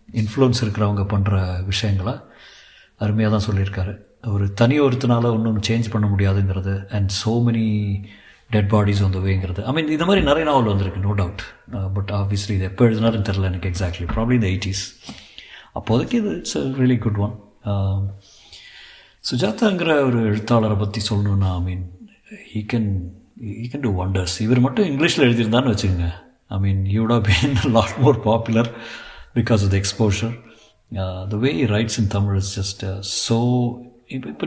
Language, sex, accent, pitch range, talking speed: Tamil, male, native, 100-120 Hz, 145 wpm